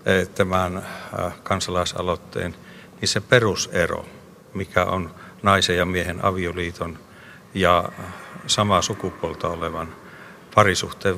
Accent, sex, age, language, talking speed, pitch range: native, male, 60-79, Finnish, 85 wpm, 95-115 Hz